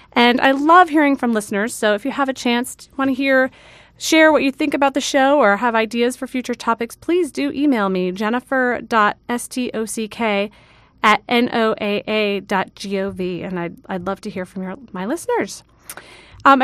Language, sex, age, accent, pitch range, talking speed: English, female, 30-49, American, 195-240 Hz, 185 wpm